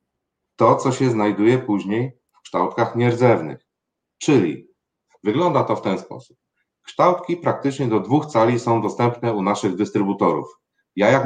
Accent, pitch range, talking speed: native, 105-130 Hz, 140 wpm